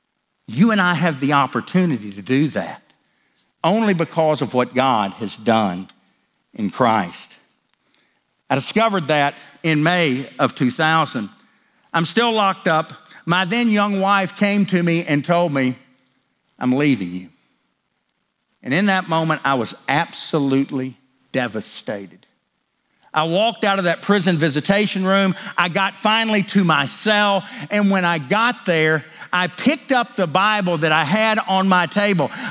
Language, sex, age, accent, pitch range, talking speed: English, male, 50-69, American, 165-235 Hz, 150 wpm